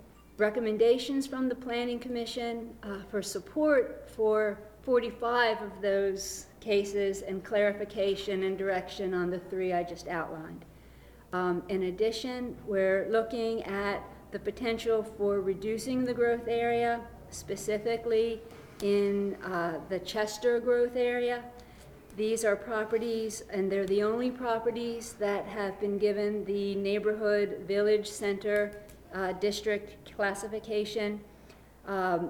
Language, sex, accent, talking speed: English, female, American, 115 wpm